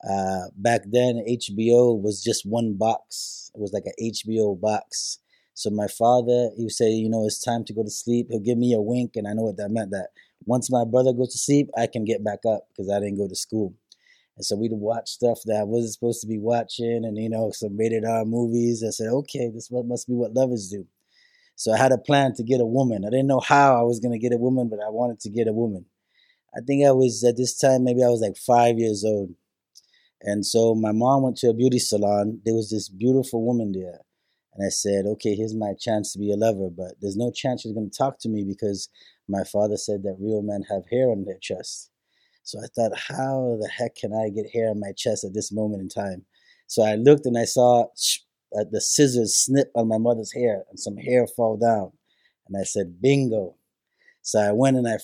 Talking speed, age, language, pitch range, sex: 240 wpm, 20-39, English, 105-120 Hz, male